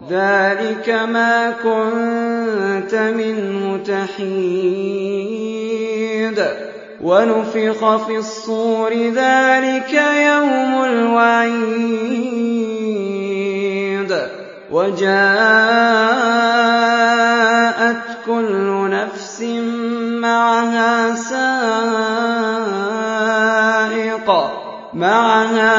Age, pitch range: 20-39, 200-230 Hz